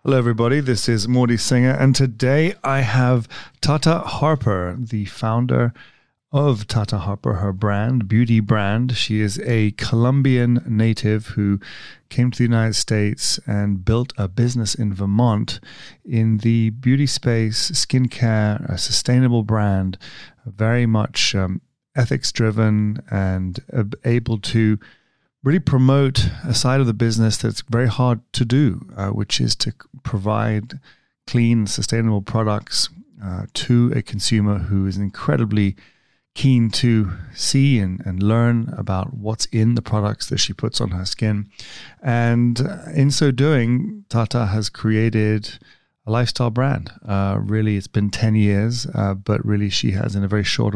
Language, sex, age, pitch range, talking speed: English, male, 30-49, 105-125 Hz, 145 wpm